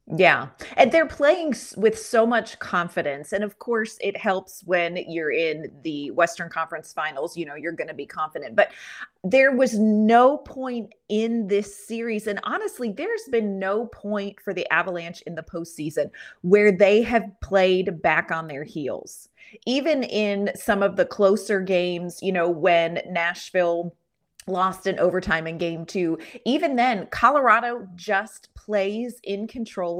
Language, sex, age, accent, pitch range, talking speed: English, female, 30-49, American, 170-220 Hz, 160 wpm